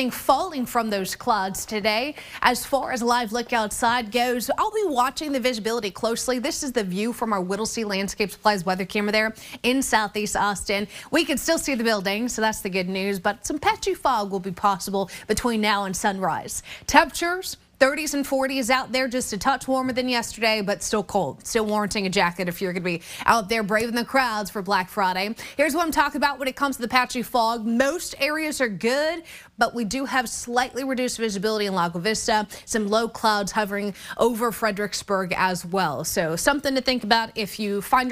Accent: American